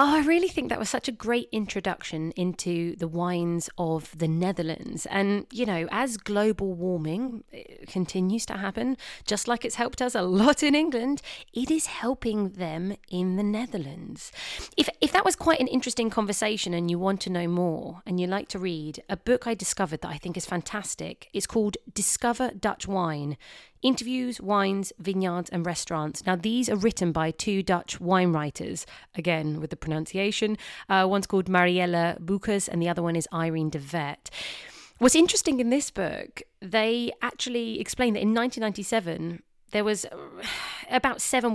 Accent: British